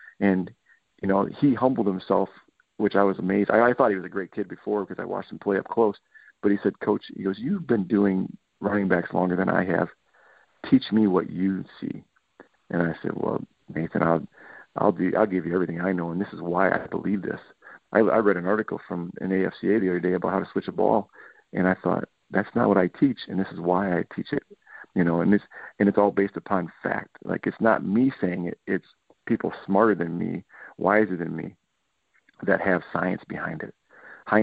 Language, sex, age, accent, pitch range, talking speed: English, male, 40-59, American, 90-105 Hz, 225 wpm